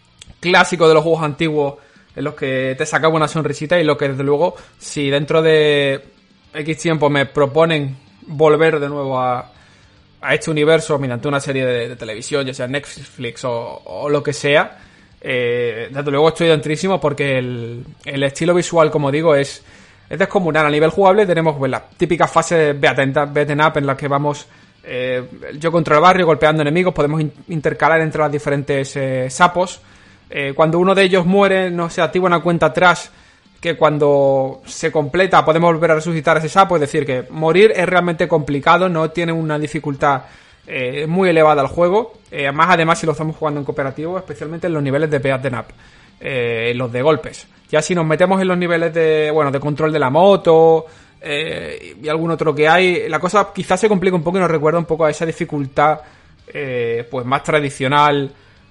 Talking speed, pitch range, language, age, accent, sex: 195 wpm, 140-170 Hz, Spanish, 20-39, Spanish, male